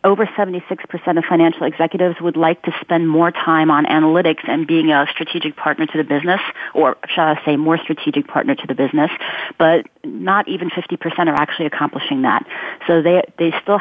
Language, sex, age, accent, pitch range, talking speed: English, female, 40-59, American, 155-175 Hz, 185 wpm